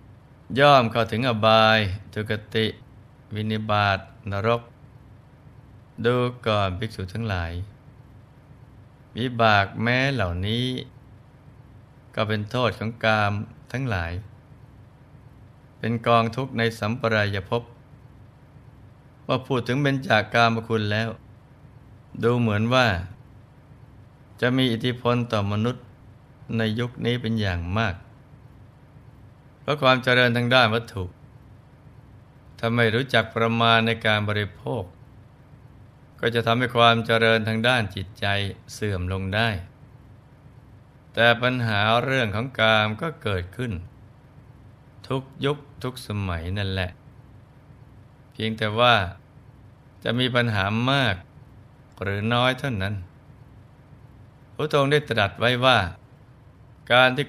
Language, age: Thai, 20-39